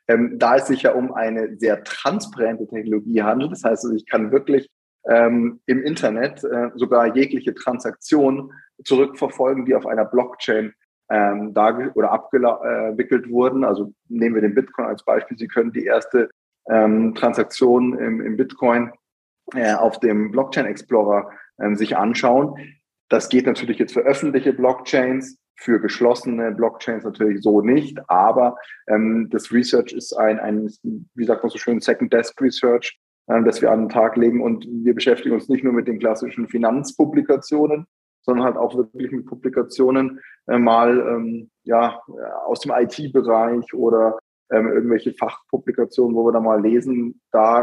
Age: 30-49